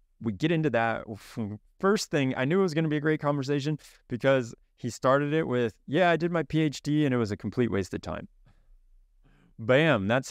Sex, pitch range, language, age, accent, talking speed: male, 95-125 Hz, English, 20-39, American, 210 wpm